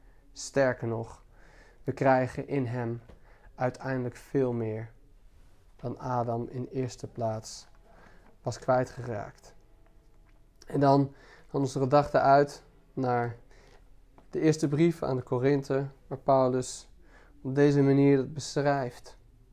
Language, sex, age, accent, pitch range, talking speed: Dutch, male, 20-39, Dutch, 120-140 Hz, 115 wpm